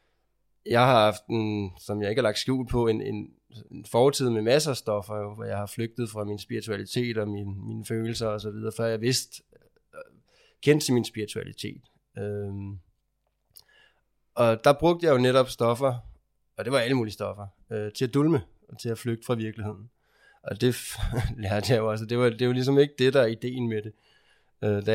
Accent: native